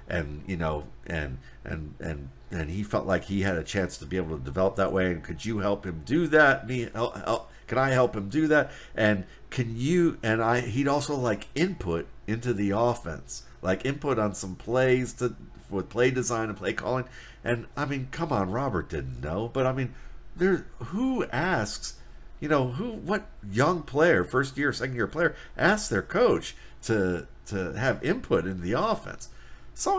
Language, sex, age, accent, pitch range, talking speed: English, male, 50-69, American, 85-125 Hz, 195 wpm